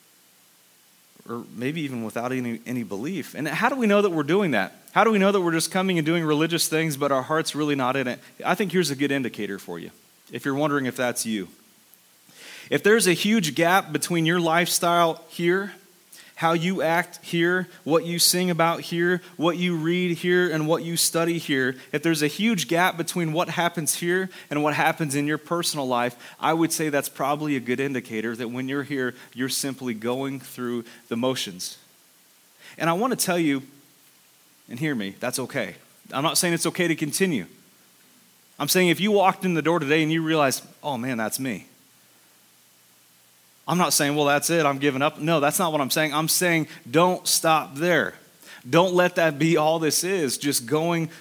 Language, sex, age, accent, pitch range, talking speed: English, male, 30-49, American, 145-175 Hz, 205 wpm